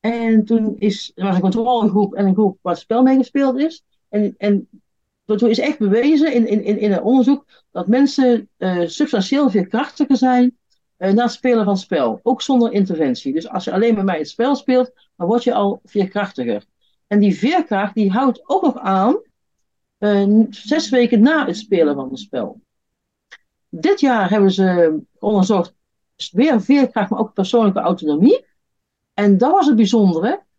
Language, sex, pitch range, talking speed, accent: Dutch, female, 200-260 Hz, 180 wpm, Dutch